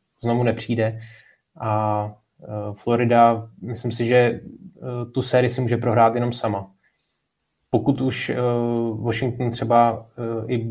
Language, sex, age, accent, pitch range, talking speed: Czech, male, 20-39, native, 110-115 Hz, 105 wpm